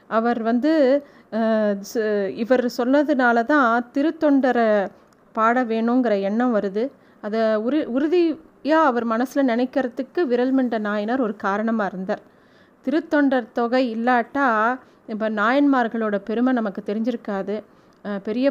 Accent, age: native, 30-49